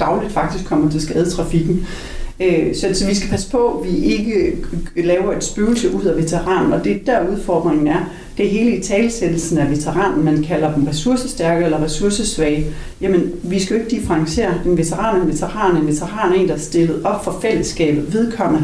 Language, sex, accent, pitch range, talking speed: Danish, female, native, 165-205 Hz, 185 wpm